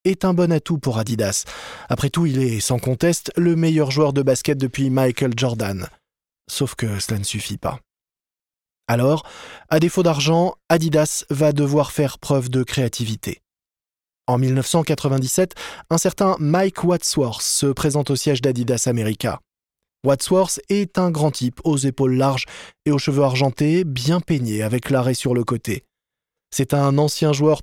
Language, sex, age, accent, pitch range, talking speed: French, male, 20-39, French, 130-165 Hz, 155 wpm